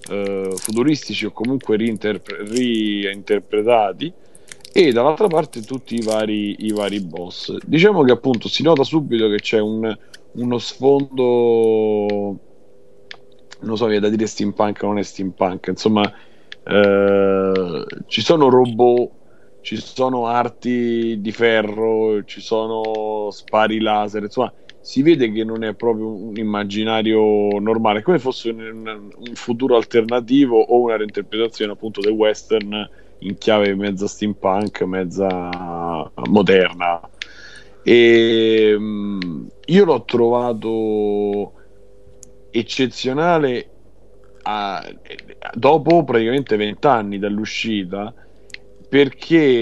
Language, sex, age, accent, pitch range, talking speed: Italian, male, 40-59, native, 100-120 Hz, 105 wpm